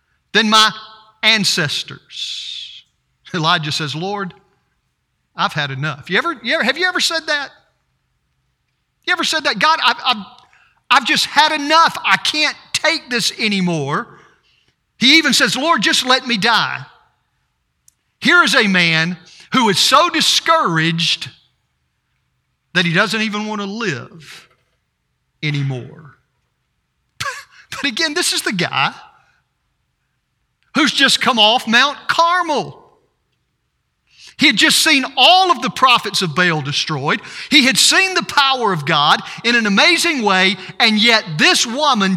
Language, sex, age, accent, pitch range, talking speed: English, male, 50-69, American, 180-295 Hz, 135 wpm